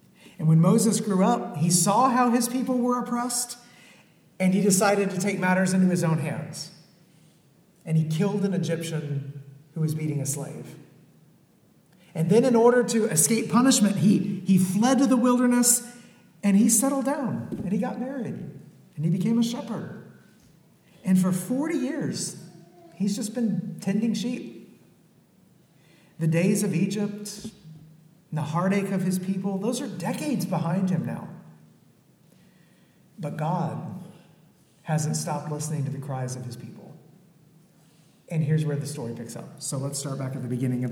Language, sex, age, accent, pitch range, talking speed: English, male, 50-69, American, 150-200 Hz, 160 wpm